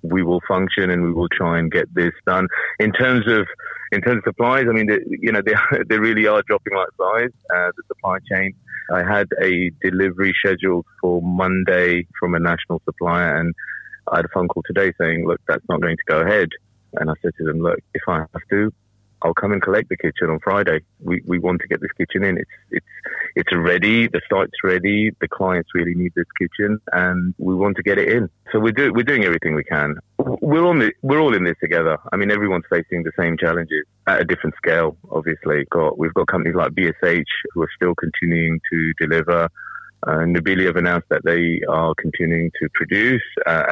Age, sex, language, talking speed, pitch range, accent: 30-49, male, English, 215 wpm, 85-100 Hz, British